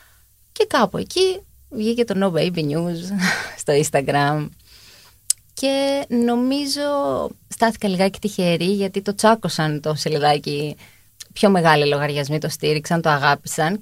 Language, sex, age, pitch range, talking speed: Greek, female, 20-39, 160-225 Hz, 115 wpm